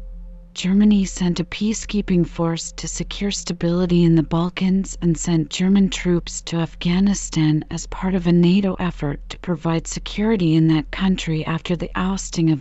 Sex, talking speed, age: female, 155 wpm, 40-59